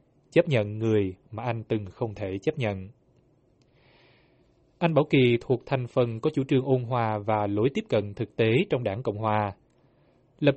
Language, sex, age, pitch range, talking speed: Vietnamese, male, 20-39, 110-135 Hz, 180 wpm